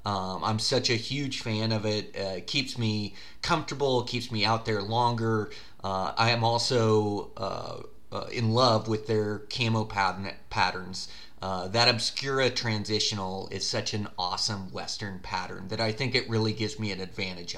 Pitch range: 105-125 Hz